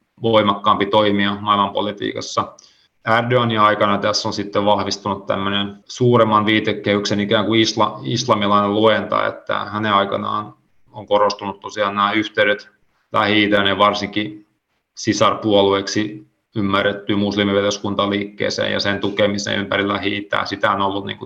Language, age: Finnish, 30-49